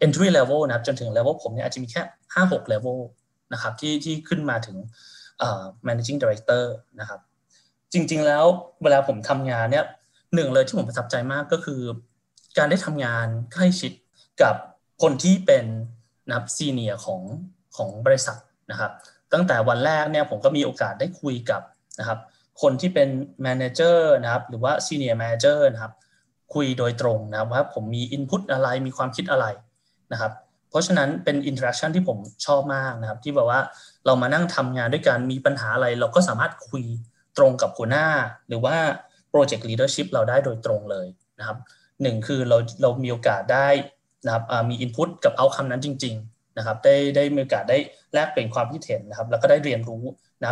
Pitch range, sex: 120-155 Hz, male